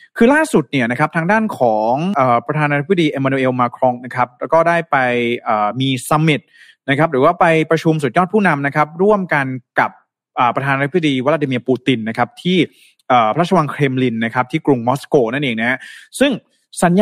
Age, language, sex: 20-39, Thai, male